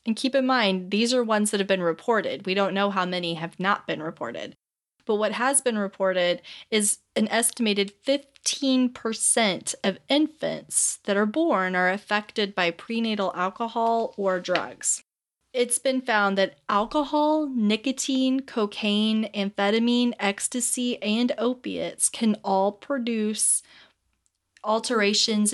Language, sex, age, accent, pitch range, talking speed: English, female, 30-49, American, 195-245 Hz, 130 wpm